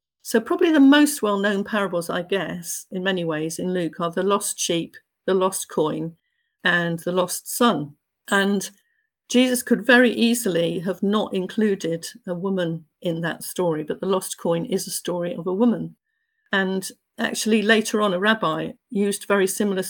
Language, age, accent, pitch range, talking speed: English, 50-69, British, 180-220 Hz, 170 wpm